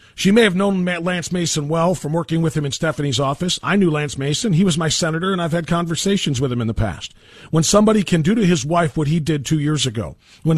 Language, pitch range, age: English, 145-185 Hz, 40-59